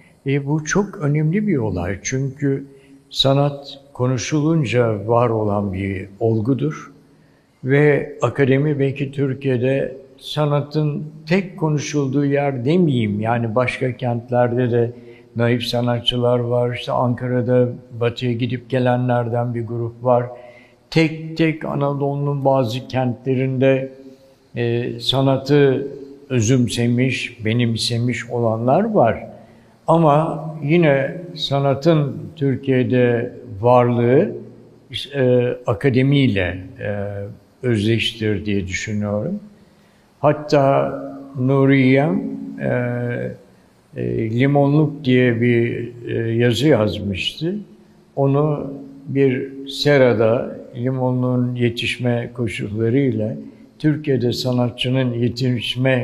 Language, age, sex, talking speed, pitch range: Turkish, 60-79, male, 80 wpm, 120-140 Hz